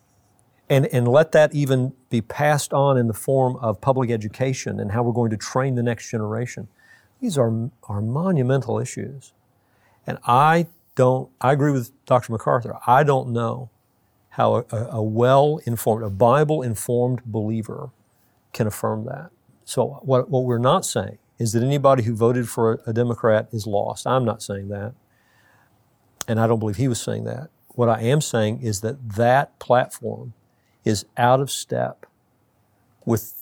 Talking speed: 165 wpm